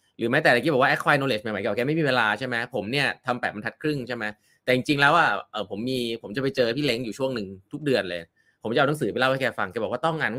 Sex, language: male, Thai